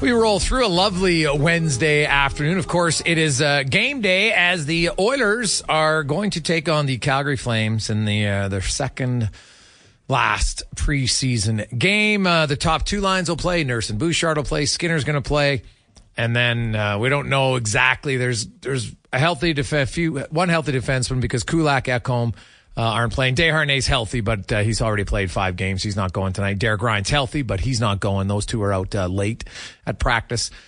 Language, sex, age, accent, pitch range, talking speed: English, male, 40-59, American, 105-155 Hz, 195 wpm